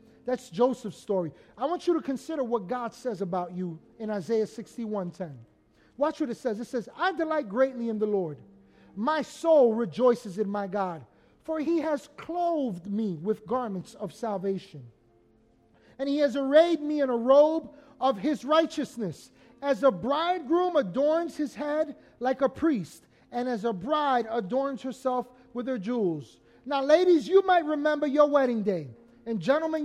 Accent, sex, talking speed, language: American, male, 165 wpm, English